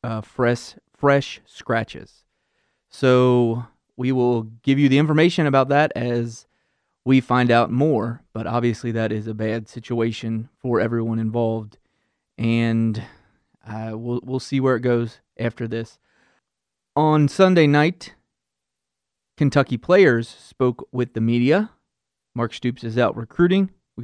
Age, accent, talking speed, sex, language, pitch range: 30-49, American, 130 wpm, male, English, 115-130 Hz